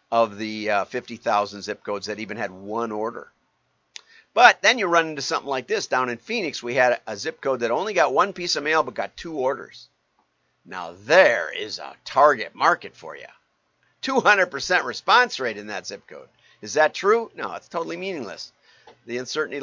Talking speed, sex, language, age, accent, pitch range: 190 wpm, male, English, 50-69, American, 135-210 Hz